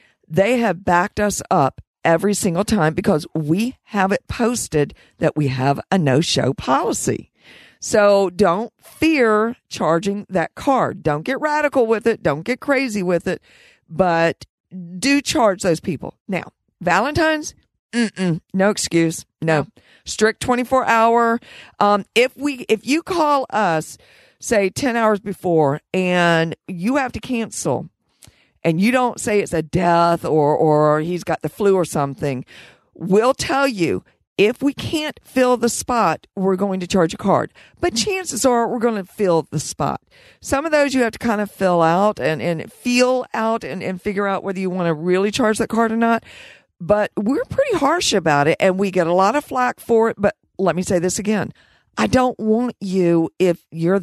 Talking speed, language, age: 175 wpm, English, 50-69